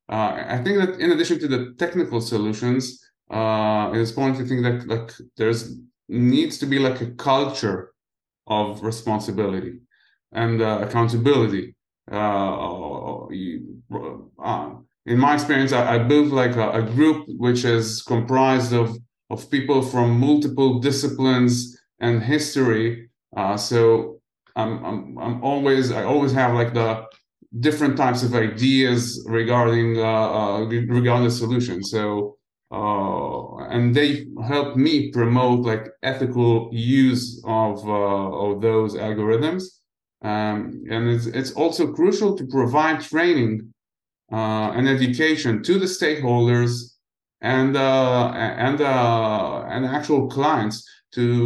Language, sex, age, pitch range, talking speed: English, male, 30-49, 110-135 Hz, 130 wpm